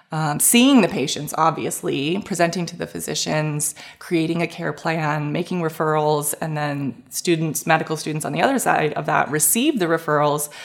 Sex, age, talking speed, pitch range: female, 20-39, 165 wpm, 155-205 Hz